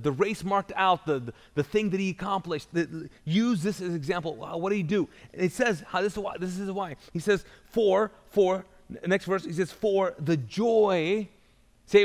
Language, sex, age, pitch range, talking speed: English, male, 30-49, 165-195 Hz, 210 wpm